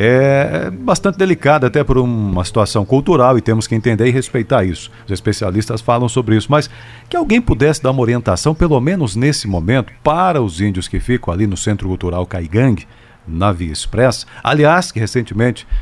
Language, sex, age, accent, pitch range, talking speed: Portuguese, male, 50-69, Brazilian, 105-155 Hz, 180 wpm